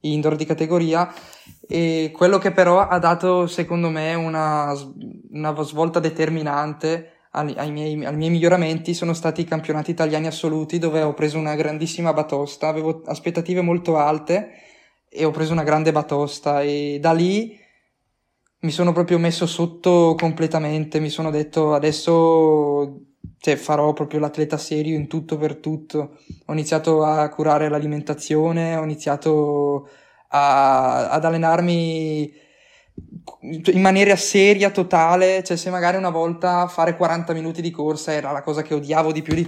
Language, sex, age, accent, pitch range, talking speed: Italian, male, 20-39, native, 150-170 Hz, 145 wpm